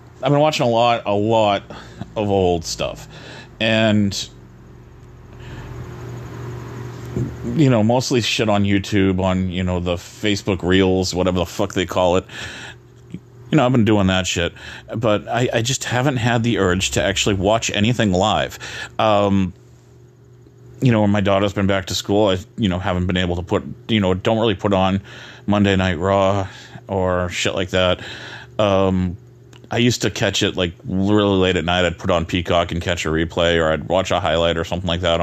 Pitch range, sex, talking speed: 90-120 Hz, male, 185 wpm